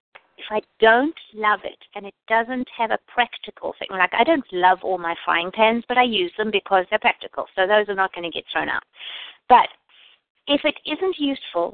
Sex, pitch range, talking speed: female, 195-260 Hz, 205 wpm